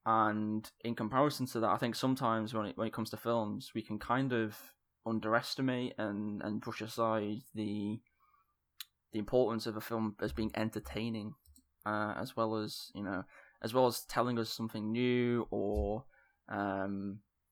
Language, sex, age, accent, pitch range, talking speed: English, male, 10-29, British, 105-115 Hz, 165 wpm